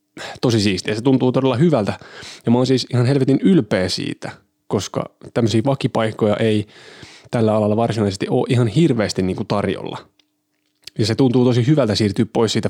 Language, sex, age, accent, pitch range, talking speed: Finnish, male, 20-39, native, 105-135 Hz, 155 wpm